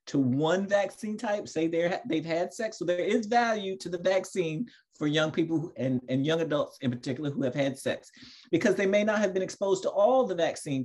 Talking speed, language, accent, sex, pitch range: 225 wpm, English, American, male, 125-160 Hz